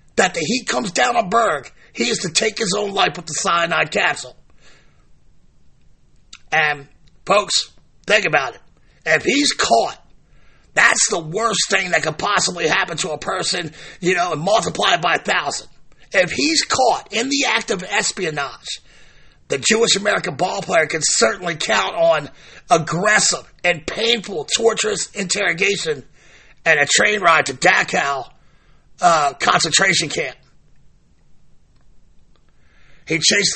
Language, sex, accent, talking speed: English, male, American, 135 wpm